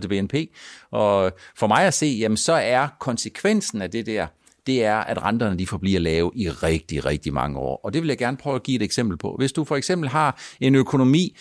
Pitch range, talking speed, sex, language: 115-170 Hz, 230 wpm, male, Danish